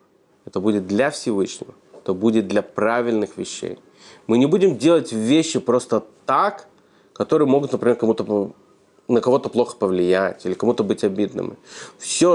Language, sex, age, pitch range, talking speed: Russian, male, 30-49, 110-145 Hz, 140 wpm